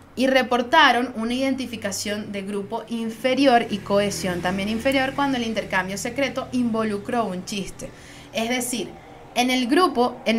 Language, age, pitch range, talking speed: Spanish, 20-39, 200-255 Hz, 140 wpm